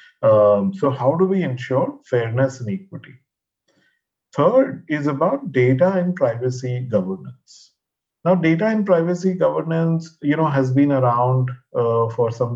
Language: English